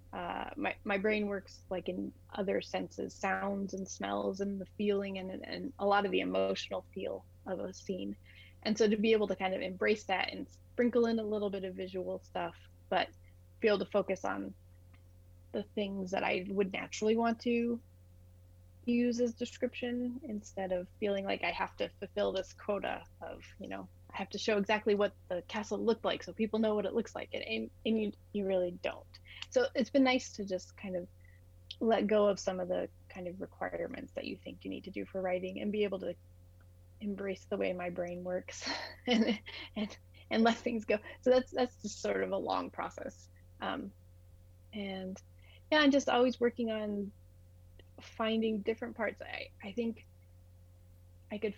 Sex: female